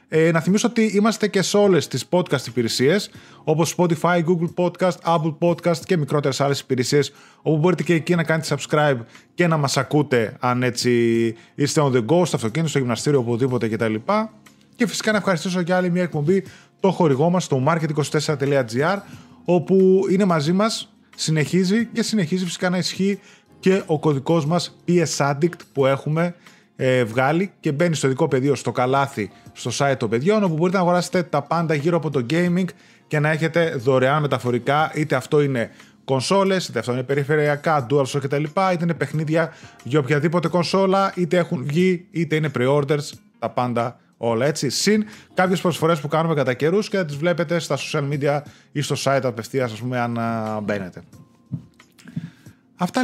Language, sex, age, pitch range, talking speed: Greek, male, 20-39, 135-180 Hz, 180 wpm